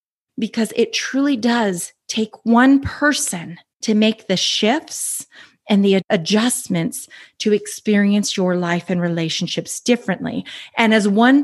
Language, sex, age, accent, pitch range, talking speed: English, female, 30-49, American, 195-230 Hz, 125 wpm